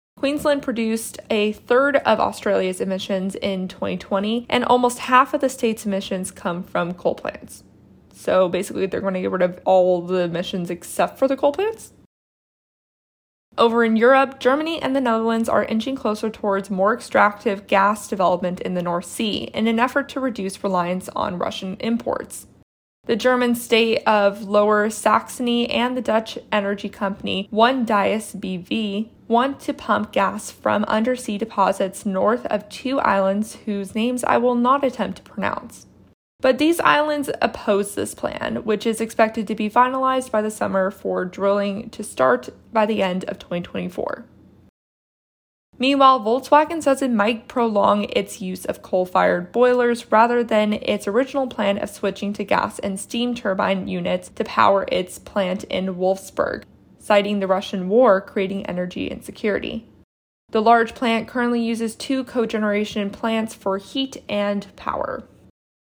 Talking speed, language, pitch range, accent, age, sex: 155 wpm, English, 195-245 Hz, American, 20-39, female